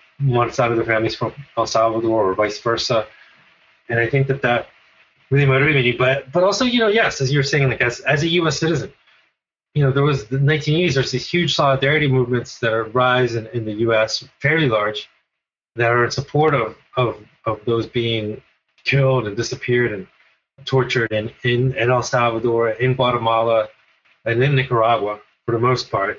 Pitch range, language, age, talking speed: 115-135 Hz, English, 20-39, 185 wpm